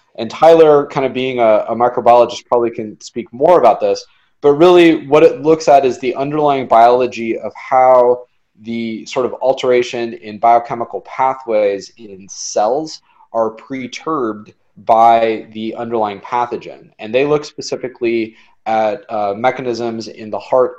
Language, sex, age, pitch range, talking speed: English, male, 20-39, 110-135 Hz, 145 wpm